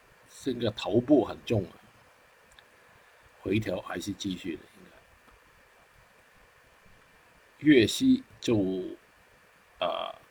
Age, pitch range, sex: 50-69, 95-115 Hz, male